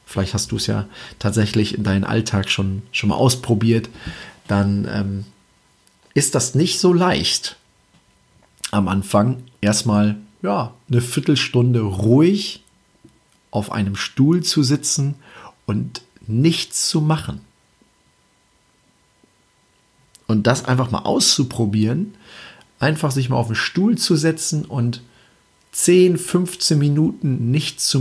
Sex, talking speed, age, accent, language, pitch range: male, 120 wpm, 40-59, German, German, 105-145 Hz